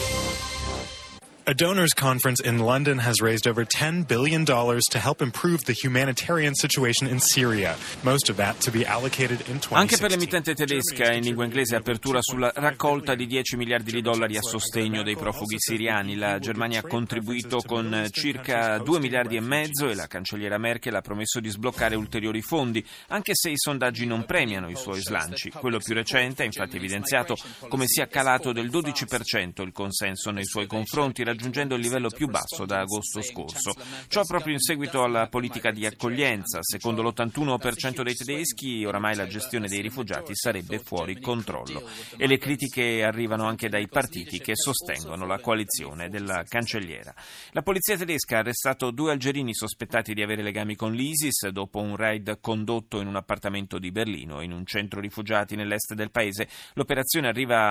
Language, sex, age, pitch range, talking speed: Italian, male, 30-49, 105-130 Hz, 180 wpm